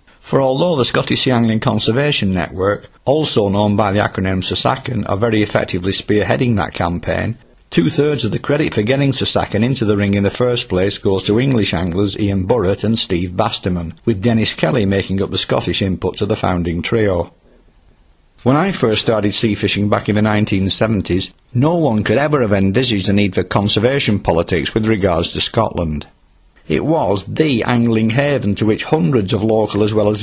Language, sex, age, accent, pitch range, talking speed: English, male, 50-69, British, 95-115 Hz, 185 wpm